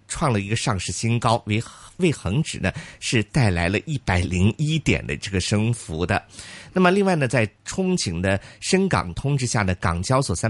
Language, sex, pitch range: Chinese, male, 95-130 Hz